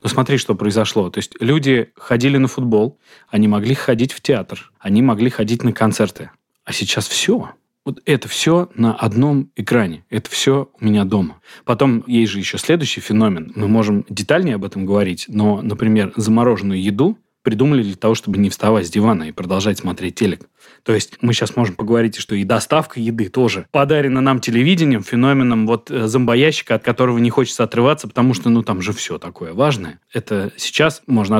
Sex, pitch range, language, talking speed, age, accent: male, 105-130 Hz, Russian, 180 wpm, 20-39, native